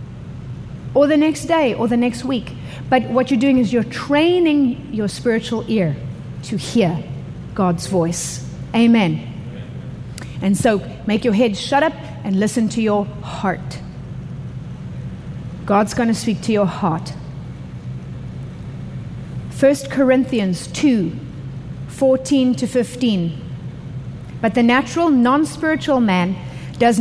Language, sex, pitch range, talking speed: English, female, 185-255 Hz, 120 wpm